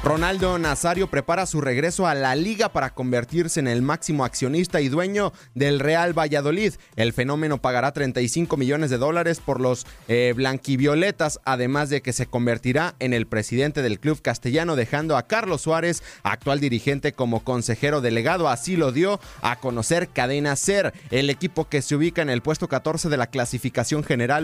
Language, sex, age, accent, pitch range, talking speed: Spanish, male, 30-49, Mexican, 125-160 Hz, 170 wpm